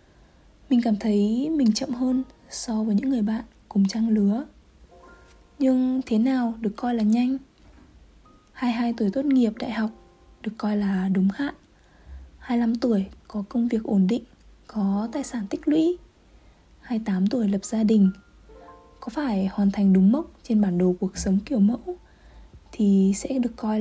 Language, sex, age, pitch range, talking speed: Vietnamese, female, 20-39, 195-255 Hz, 165 wpm